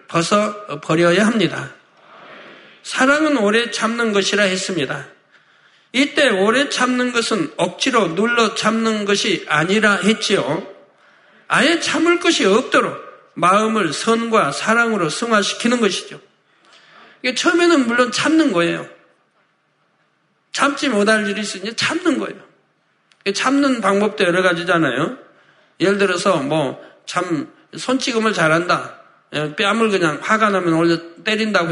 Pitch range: 195-245 Hz